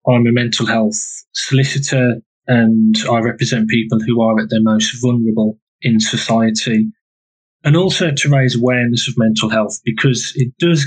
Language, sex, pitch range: English, male, 110-130 Hz